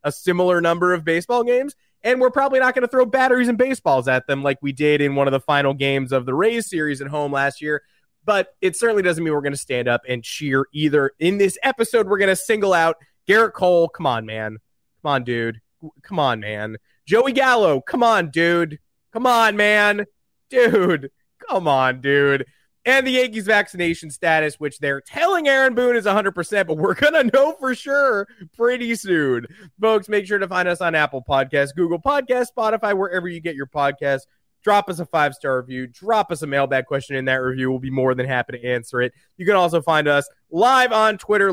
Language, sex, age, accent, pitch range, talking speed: English, male, 30-49, American, 140-215 Hz, 210 wpm